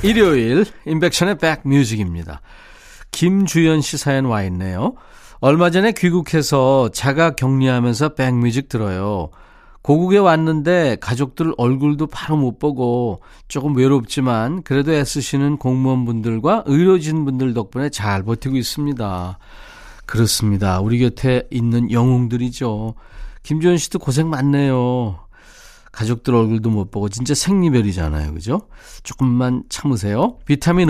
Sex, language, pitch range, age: male, Korean, 110-155 Hz, 40-59